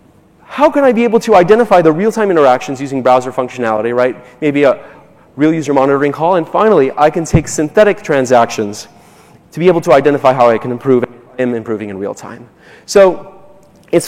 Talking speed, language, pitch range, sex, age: 180 wpm, English, 140-200 Hz, male, 30-49